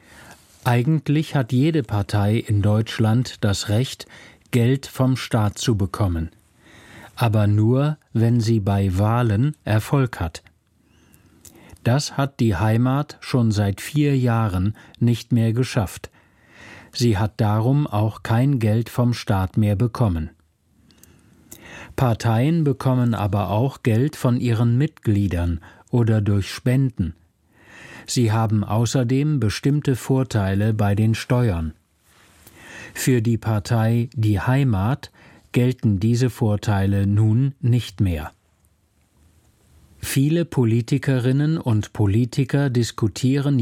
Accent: German